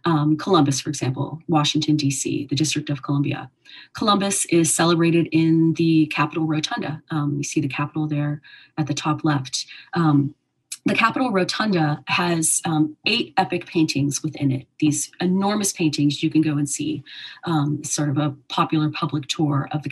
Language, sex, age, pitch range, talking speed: English, female, 30-49, 150-185 Hz, 165 wpm